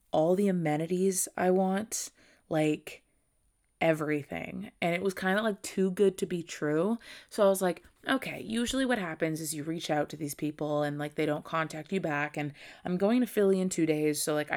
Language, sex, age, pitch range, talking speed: English, female, 20-39, 155-210 Hz, 205 wpm